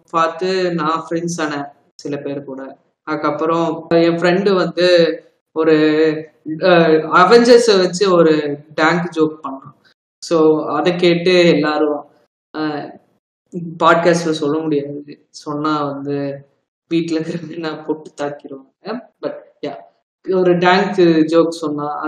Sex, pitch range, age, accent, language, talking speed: female, 155-185 Hz, 20-39, native, Tamil, 65 wpm